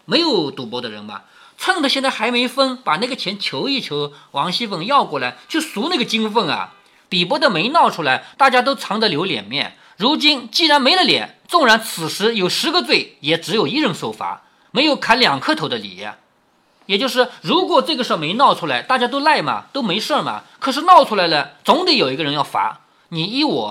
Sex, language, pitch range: male, Chinese, 200-290 Hz